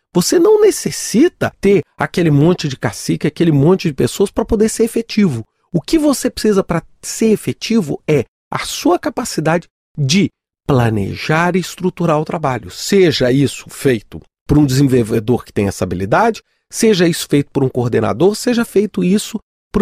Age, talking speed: 40-59, 160 wpm